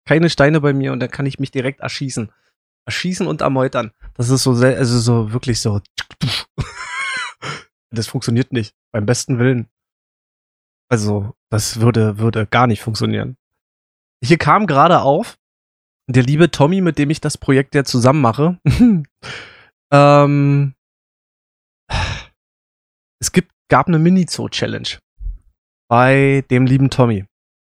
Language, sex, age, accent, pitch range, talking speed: German, male, 20-39, German, 120-155 Hz, 130 wpm